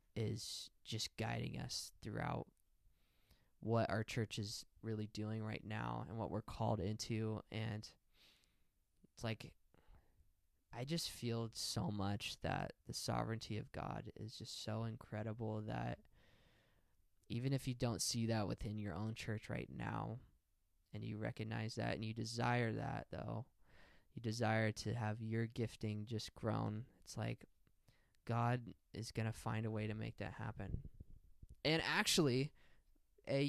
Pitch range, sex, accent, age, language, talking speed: 105-125 Hz, male, American, 10-29, English, 145 wpm